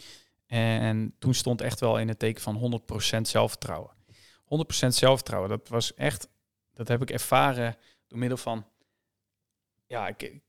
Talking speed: 150 wpm